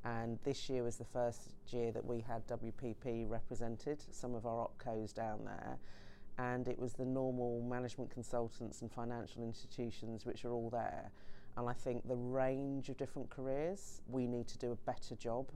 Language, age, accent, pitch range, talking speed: English, 30-49, British, 115-125 Hz, 180 wpm